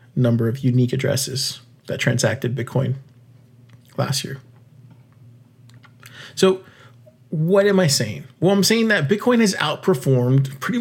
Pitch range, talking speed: 125-145 Hz, 120 wpm